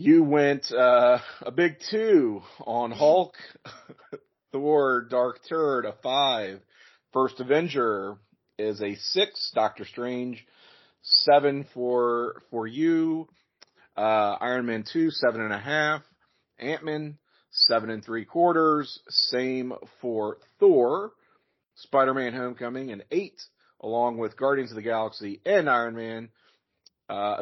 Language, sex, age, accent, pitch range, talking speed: English, male, 40-59, American, 105-140 Hz, 120 wpm